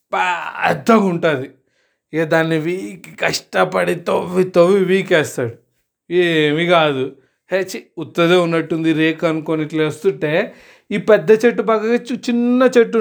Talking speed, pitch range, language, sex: 100 wpm, 155-190 Hz, Telugu, male